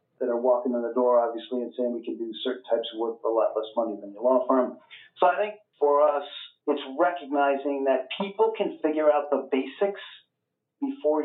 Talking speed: 215 wpm